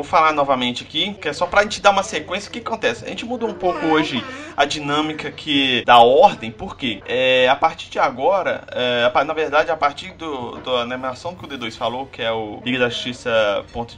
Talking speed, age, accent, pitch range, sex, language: 215 wpm, 20-39, Brazilian, 135-200 Hz, male, Portuguese